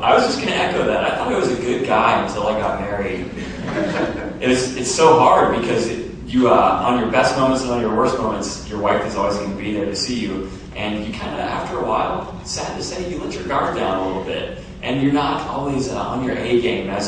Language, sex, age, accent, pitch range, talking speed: English, male, 30-49, American, 100-115 Hz, 260 wpm